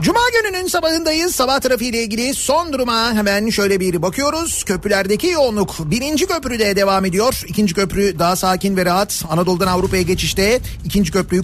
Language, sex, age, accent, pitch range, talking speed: Turkish, male, 40-59, native, 165-205 Hz, 155 wpm